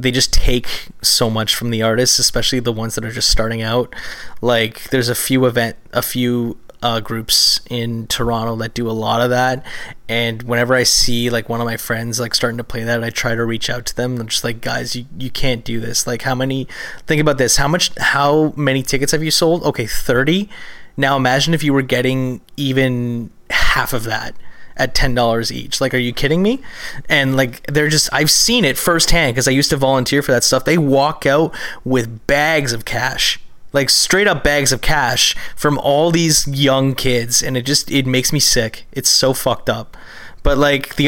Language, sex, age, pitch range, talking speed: English, male, 20-39, 120-145 Hz, 215 wpm